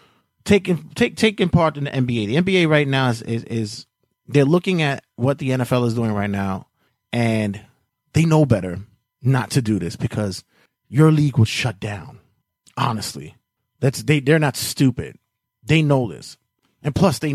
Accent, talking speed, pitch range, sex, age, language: American, 175 wpm, 105-140 Hz, male, 30-49, English